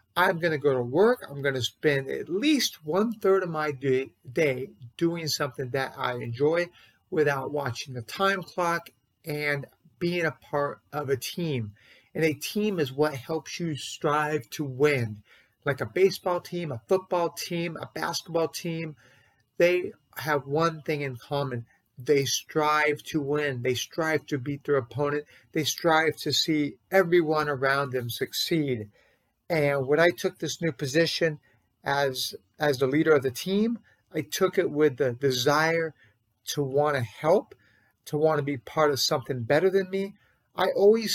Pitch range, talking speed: 135-170 Hz, 165 wpm